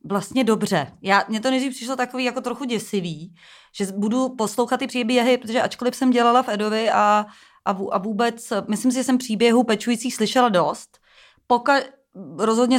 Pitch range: 205-250 Hz